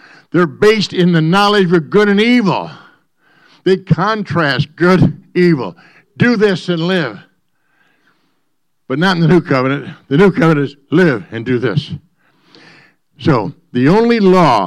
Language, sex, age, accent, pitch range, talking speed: English, male, 60-79, American, 135-170 Hz, 145 wpm